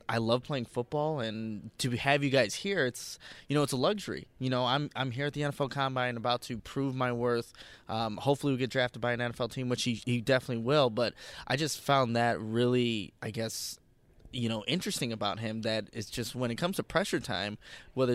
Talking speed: 220 wpm